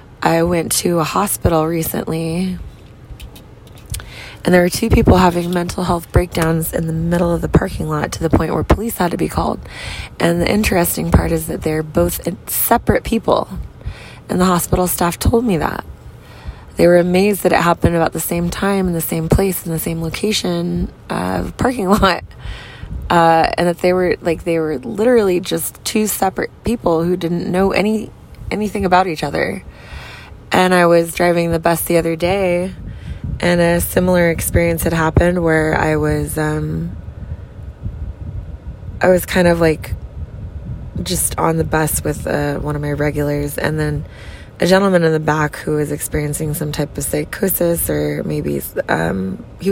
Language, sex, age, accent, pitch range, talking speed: English, female, 20-39, American, 130-175 Hz, 175 wpm